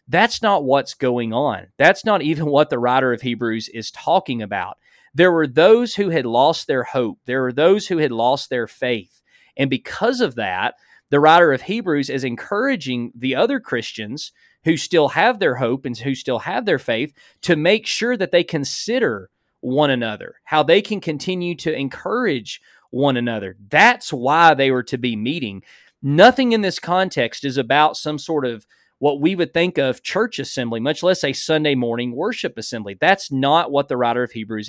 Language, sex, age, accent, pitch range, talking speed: English, male, 30-49, American, 125-175 Hz, 190 wpm